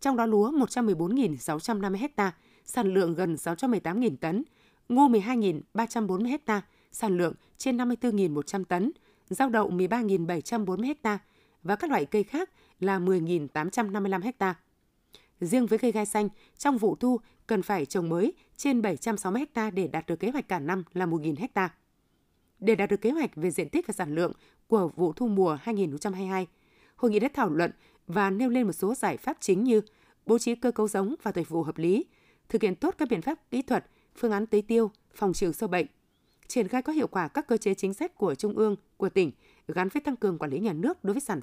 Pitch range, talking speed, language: 185-240 Hz, 200 wpm, Vietnamese